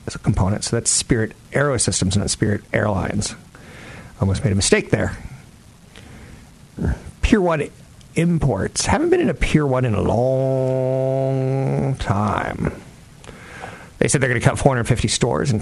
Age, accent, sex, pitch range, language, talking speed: 50-69, American, male, 100-135 Hz, English, 140 wpm